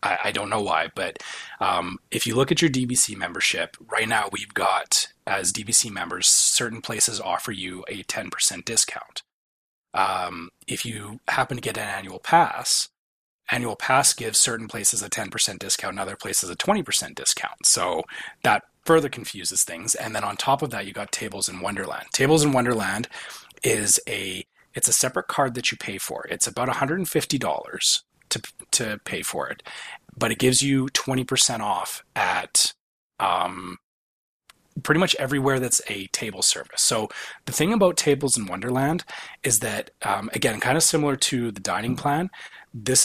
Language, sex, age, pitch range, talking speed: English, male, 30-49, 105-140 Hz, 170 wpm